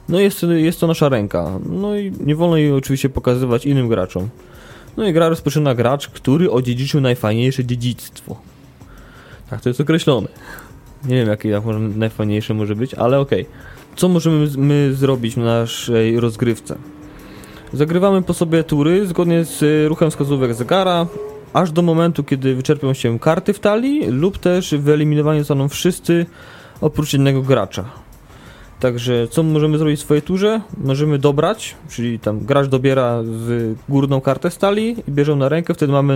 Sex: male